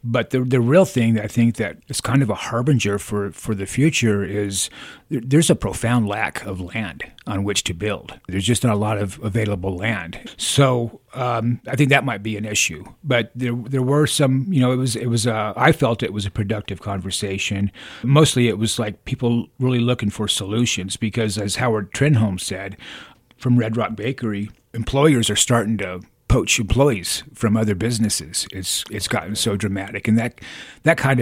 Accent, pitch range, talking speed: American, 105-130 Hz, 195 wpm